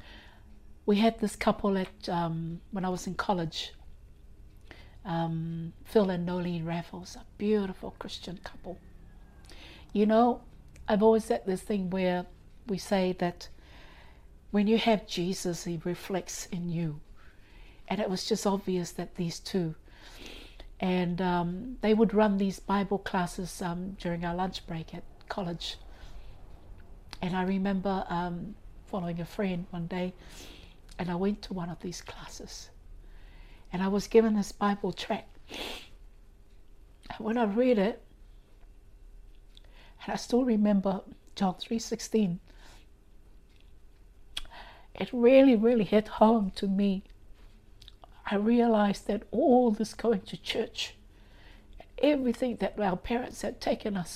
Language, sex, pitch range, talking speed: English, female, 175-215 Hz, 135 wpm